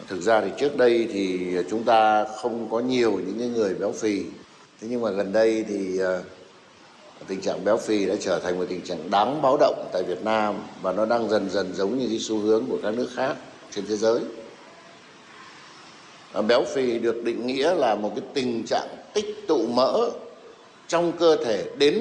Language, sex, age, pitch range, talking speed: Vietnamese, male, 60-79, 105-150 Hz, 190 wpm